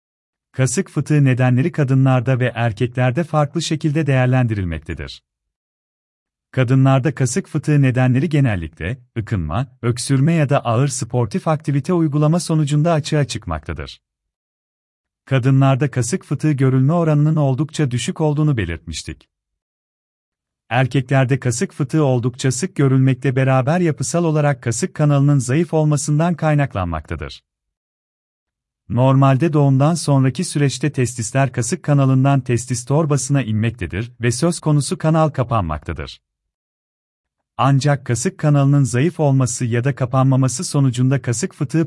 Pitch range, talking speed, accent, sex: 105-150 Hz, 105 wpm, native, male